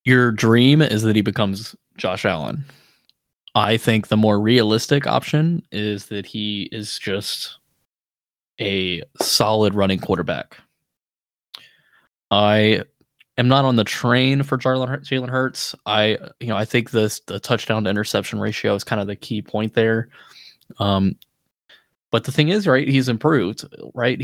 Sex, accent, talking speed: male, American, 150 wpm